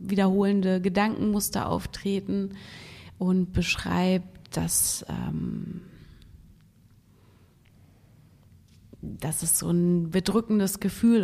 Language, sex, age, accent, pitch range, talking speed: German, female, 30-49, German, 170-210 Hz, 70 wpm